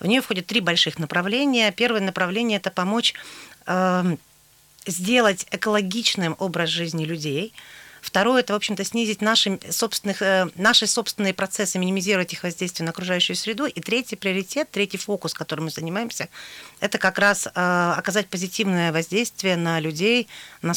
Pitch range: 170-210 Hz